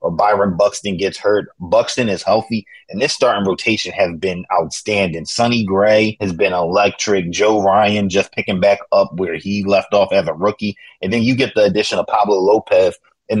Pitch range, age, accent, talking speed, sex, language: 90-105 Hz, 20-39, American, 195 wpm, male, English